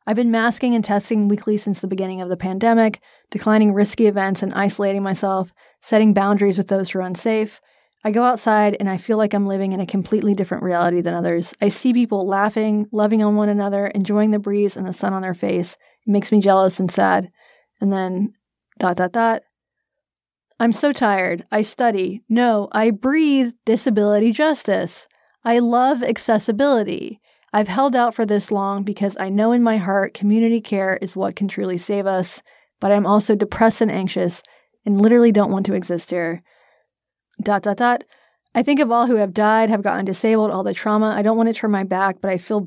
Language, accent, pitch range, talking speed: English, American, 195-225 Hz, 200 wpm